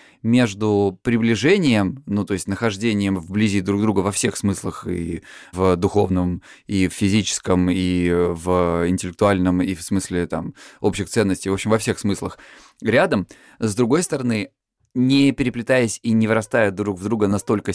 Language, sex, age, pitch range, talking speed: Russian, male, 20-39, 95-120 Hz, 150 wpm